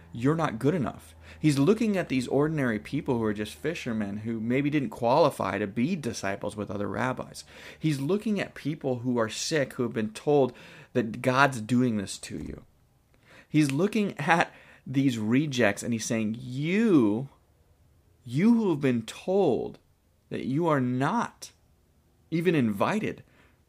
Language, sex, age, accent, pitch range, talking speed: English, male, 30-49, American, 105-155 Hz, 155 wpm